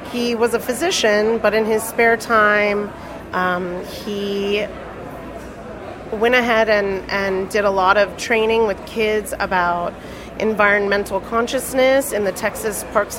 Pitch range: 200-240 Hz